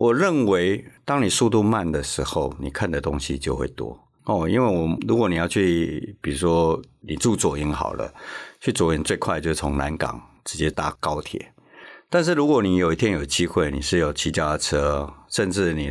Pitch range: 75-95 Hz